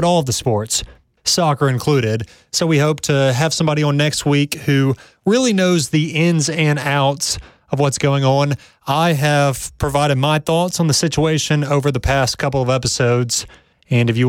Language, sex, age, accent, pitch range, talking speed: English, male, 30-49, American, 130-160 Hz, 180 wpm